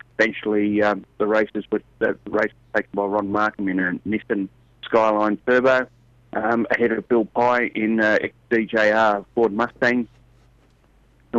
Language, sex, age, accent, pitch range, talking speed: English, male, 30-49, Australian, 100-115 Hz, 140 wpm